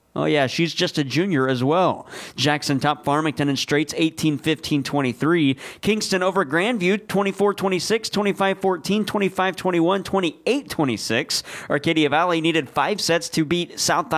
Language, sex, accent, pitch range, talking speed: English, male, American, 150-195 Hz, 125 wpm